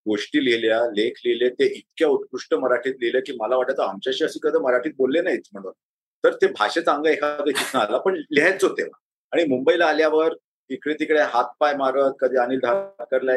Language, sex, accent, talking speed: Marathi, male, native, 190 wpm